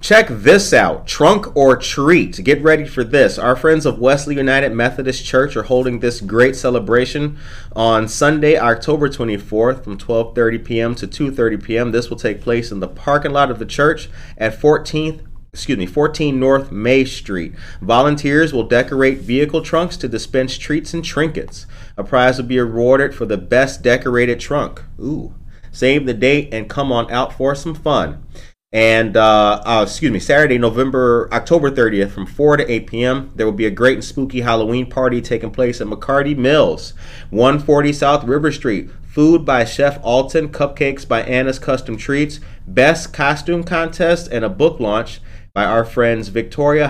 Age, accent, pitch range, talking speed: 30-49, American, 115-140 Hz, 170 wpm